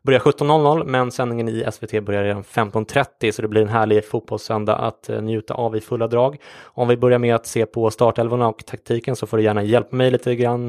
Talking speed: 220 wpm